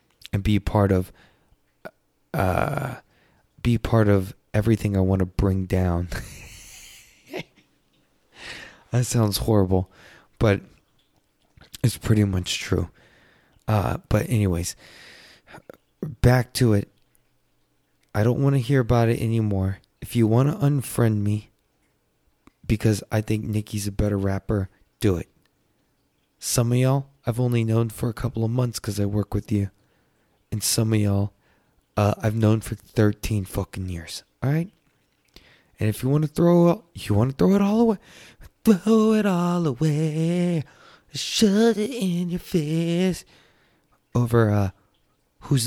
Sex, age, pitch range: male, 20-39, 100-140 Hz